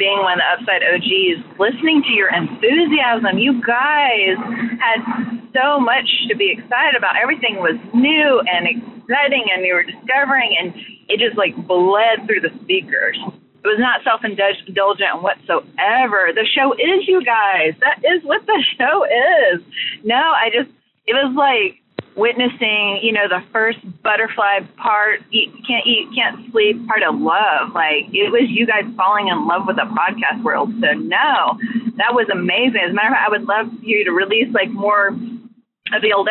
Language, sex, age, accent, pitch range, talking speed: English, female, 30-49, American, 205-270 Hz, 175 wpm